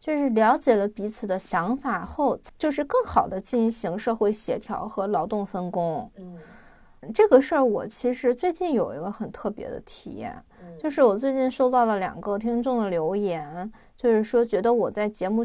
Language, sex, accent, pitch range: Chinese, female, native, 185-245 Hz